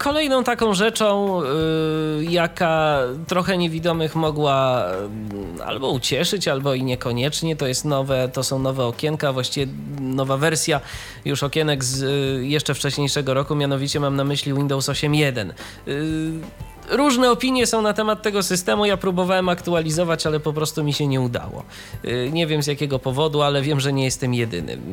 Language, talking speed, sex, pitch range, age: Polish, 145 wpm, male, 125-165 Hz, 20-39